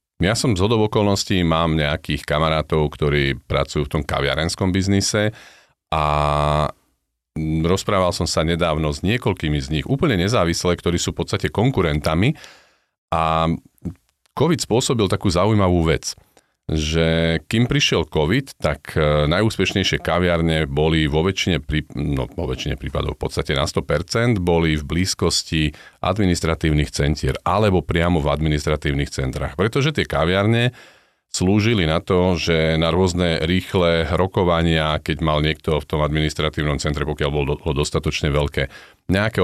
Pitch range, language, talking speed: 75-95 Hz, Slovak, 135 wpm